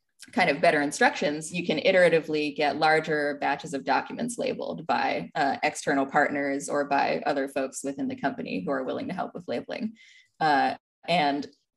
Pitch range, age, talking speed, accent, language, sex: 140-170 Hz, 20-39, 170 wpm, American, English, female